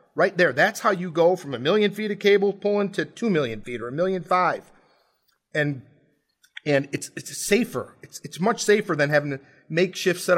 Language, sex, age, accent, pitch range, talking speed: English, male, 40-59, American, 135-180 Hz, 200 wpm